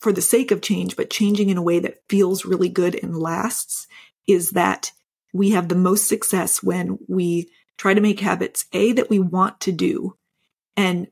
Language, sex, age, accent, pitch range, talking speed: English, female, 30-49, American, 185-215 Hz, 195 wpm